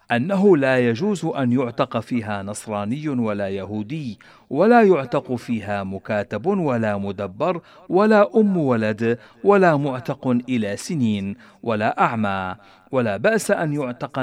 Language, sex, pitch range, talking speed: Arabic, male, 105-155 Hz, 120 wpm